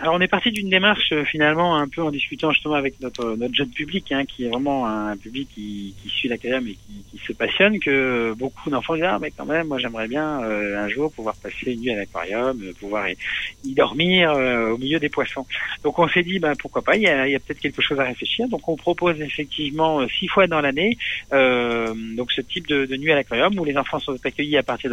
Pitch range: 115-150 Hz